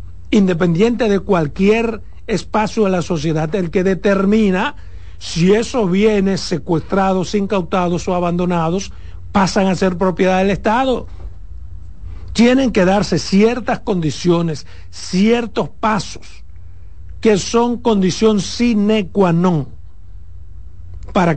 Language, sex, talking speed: Spanish, male, 105 wpm